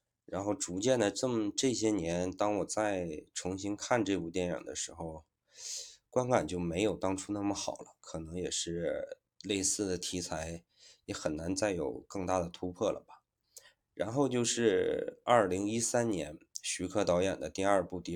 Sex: male